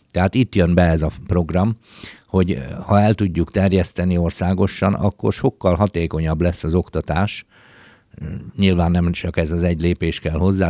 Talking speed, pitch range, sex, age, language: 155 wpm, 85-105 Hz, male, 50-69, Hungarian